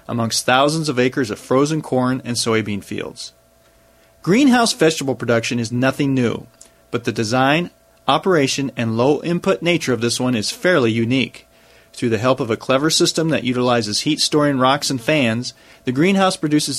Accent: American